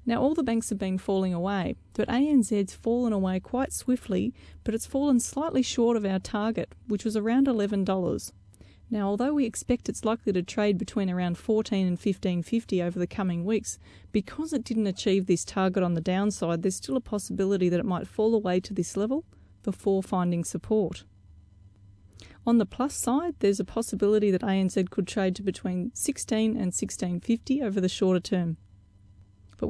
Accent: Australian